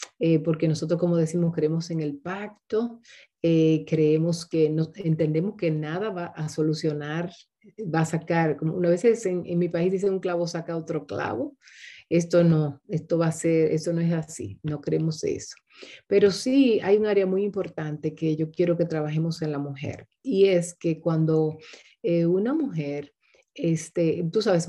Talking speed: 175 wpm